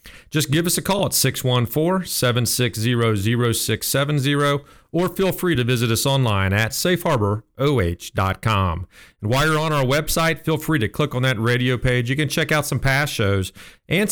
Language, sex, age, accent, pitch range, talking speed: English, male, 40-59, American, 115-150 Hz, 160 wpm